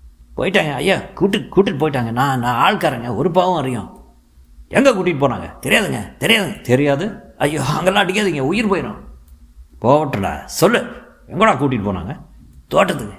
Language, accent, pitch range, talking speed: Tamil, native, 90-140 Hz, 125 wpm